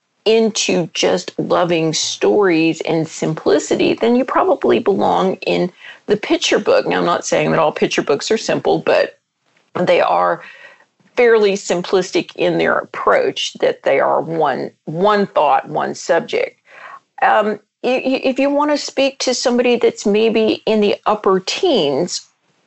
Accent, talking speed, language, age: American, 140 wpm, English, 50-69